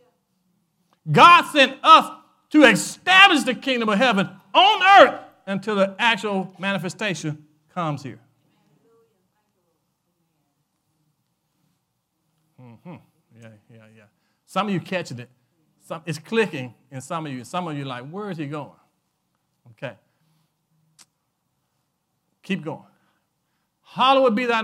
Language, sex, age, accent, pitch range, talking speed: English, male, 50-69, American, 160-220 Hz, 115 wpm